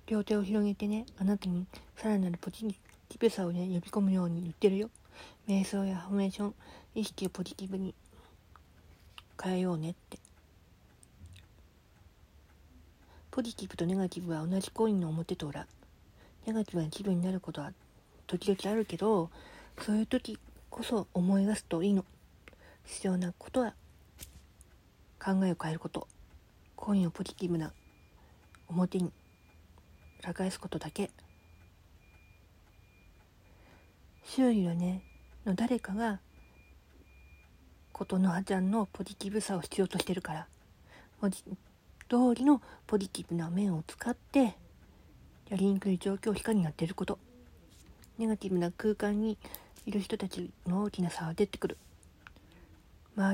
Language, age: Japanese, 40-59